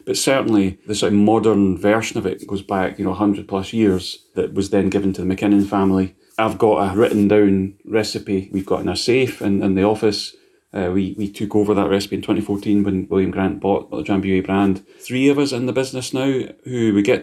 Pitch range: 95-110 Hz